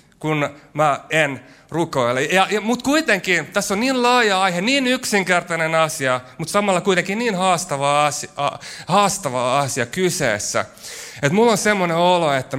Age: 30-49